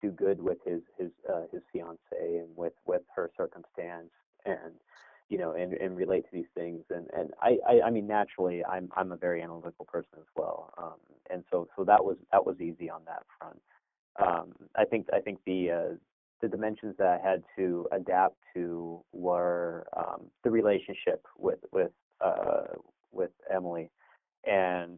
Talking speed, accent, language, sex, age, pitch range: 180 wpm, American, English, male, 30-49, 85-105 Hz